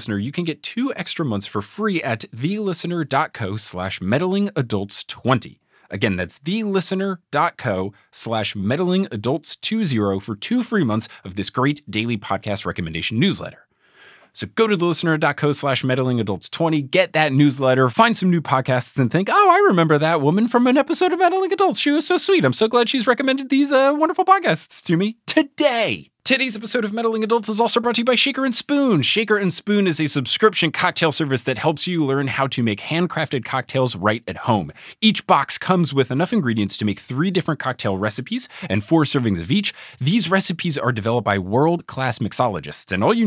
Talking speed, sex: 180 wpm, male